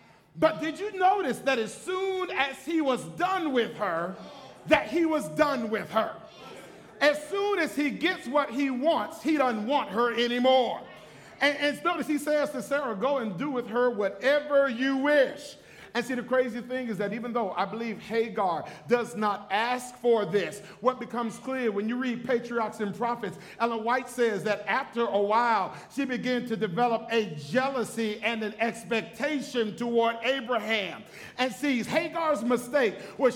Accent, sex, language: American, male, English